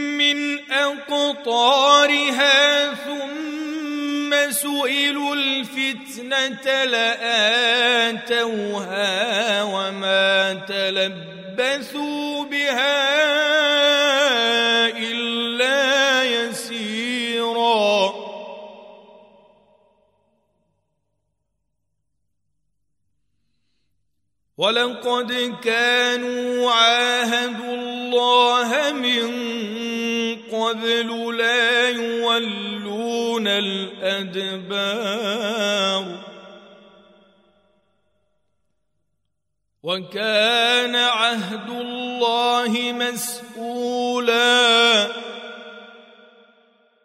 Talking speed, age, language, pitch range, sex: 30 wpm, 40-59, Arabic, 205-245 Hz, male